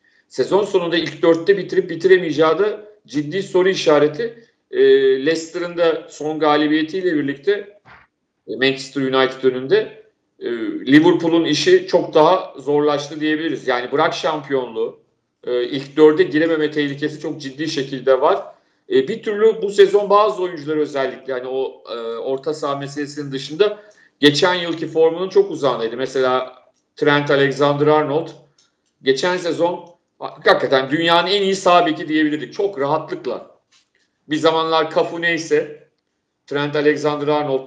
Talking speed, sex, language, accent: 125 wpm, male, Turkish, native